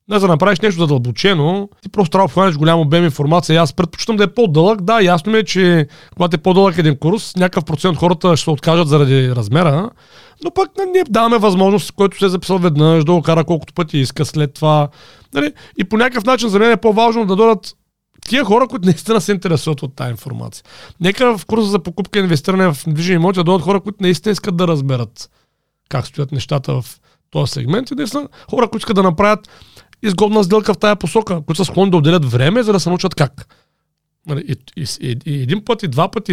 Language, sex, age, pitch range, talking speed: Bulgarian, male, 40-59, 145-200 Hz, 215 wpm